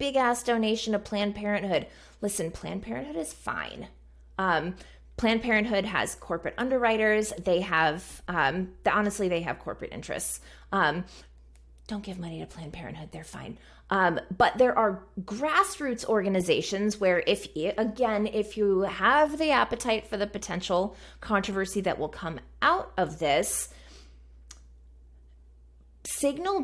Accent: American